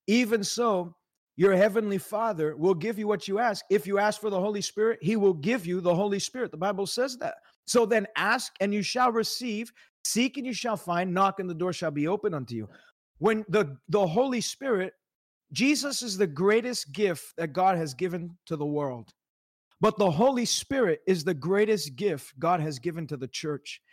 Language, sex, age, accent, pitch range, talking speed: English, male, 30-49, American, 180-220 Hz, 205 wpm